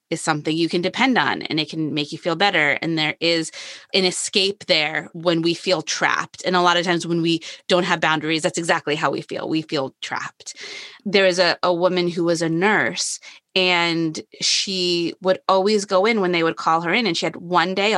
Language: English